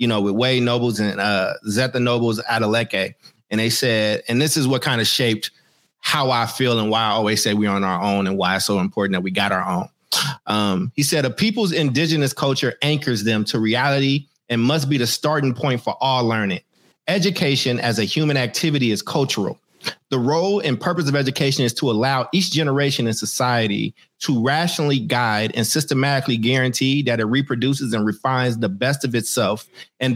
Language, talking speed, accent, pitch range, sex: English, 195 wpm, American, 110-140 Hz, male